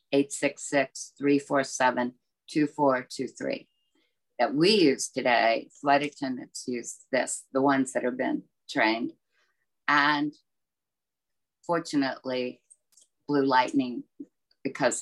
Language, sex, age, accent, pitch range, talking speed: English, female, 50-69, American, 135-165 Hz, 80 wpm